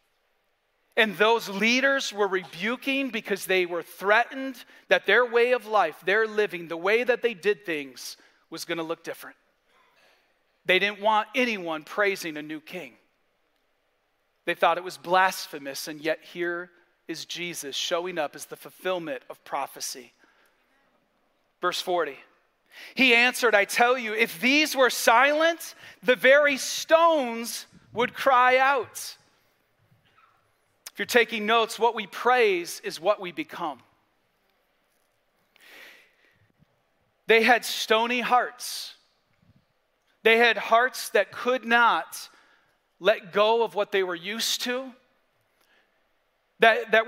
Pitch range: 185-255 Hz